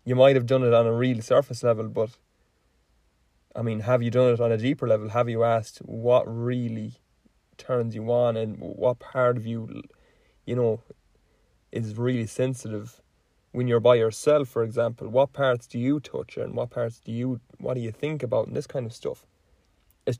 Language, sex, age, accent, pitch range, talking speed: English, male, 20-39, Irish, 110-125 Hz, 195 wpm